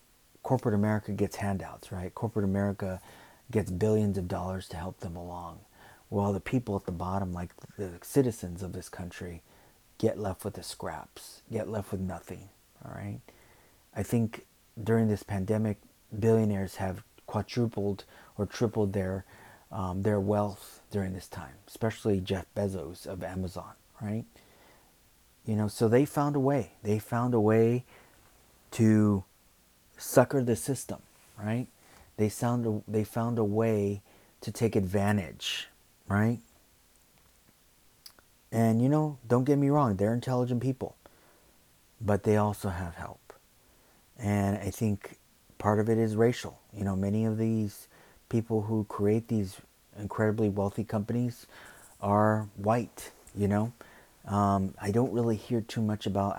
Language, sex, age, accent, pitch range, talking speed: English, male, 30-49, American, 95-115 Hz, 140 wpm